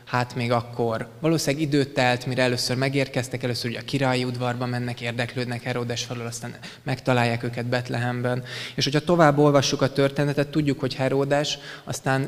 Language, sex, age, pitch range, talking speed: Hungarian, male, 20-39, 120-140 Hz, 155 wpm